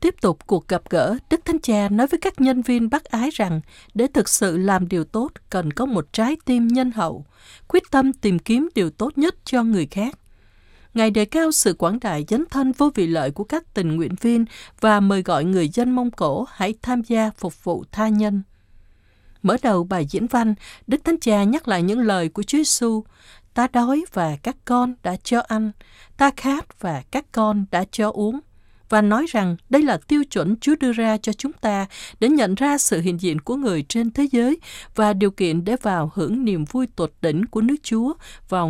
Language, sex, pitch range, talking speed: Vietnamese, female, 185-250 Hz, 215 wpm